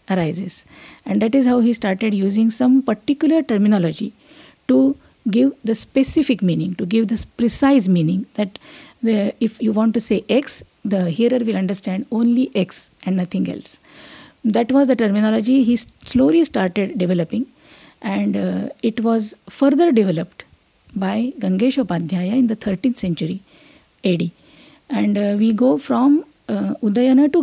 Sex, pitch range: female, 200-255 Hz